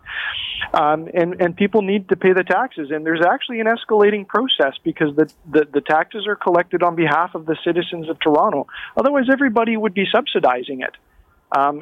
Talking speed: 185 wpm